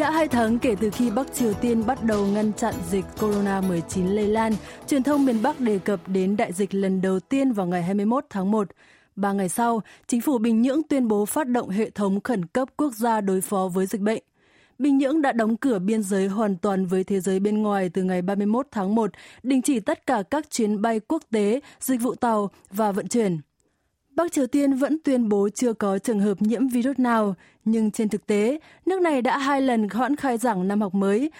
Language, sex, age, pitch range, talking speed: Vietnamese, female, 20-39, 205-260 Hz, 225 wpm